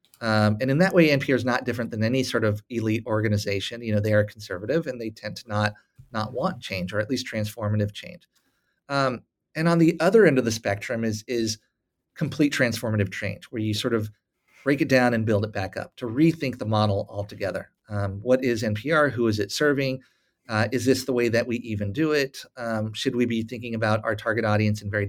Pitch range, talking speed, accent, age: 105-130 Hz, 220 wpm, American, 30-49